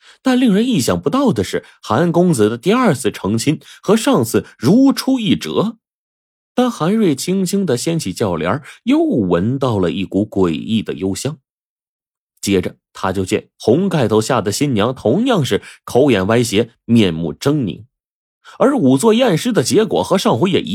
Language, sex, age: Chinese, male, 30-49